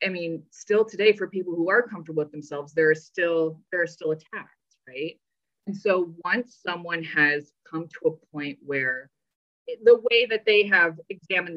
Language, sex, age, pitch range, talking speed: English, female, 20-39, 160-230 Hz, 180 wpm